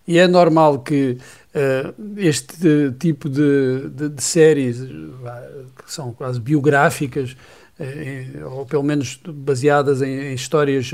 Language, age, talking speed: Portuguese, 50-69, 115 wpm